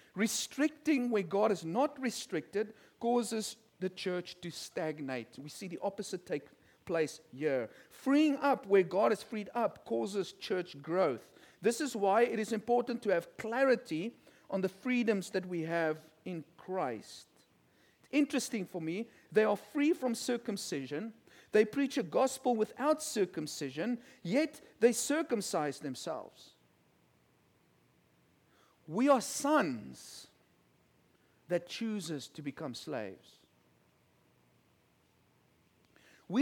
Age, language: 50-69, English